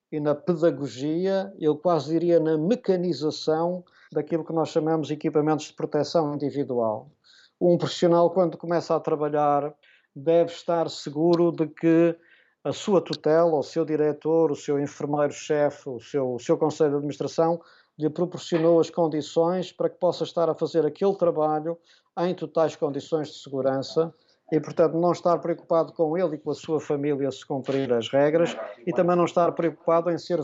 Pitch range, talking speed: 145-170 Hz, 165 wpm